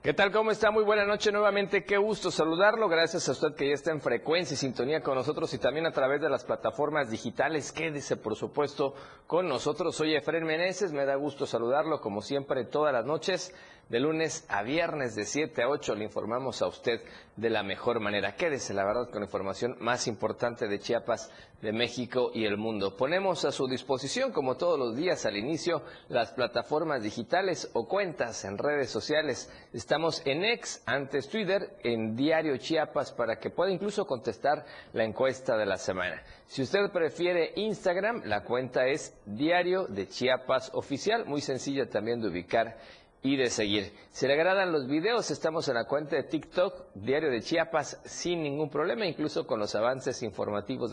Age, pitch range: 40-59, 120-170 Hz